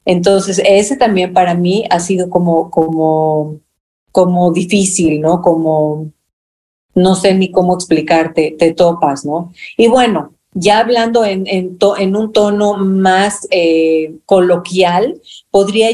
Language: Spanish